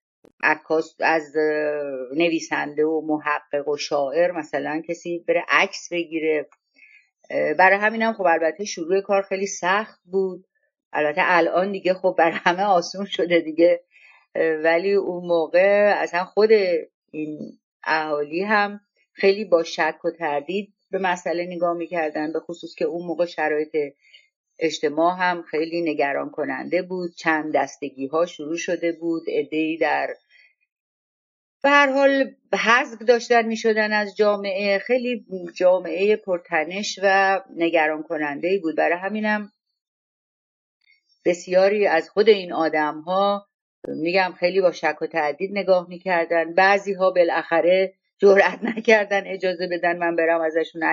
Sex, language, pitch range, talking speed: female, Persian, 160-200 Hz, 125 wpm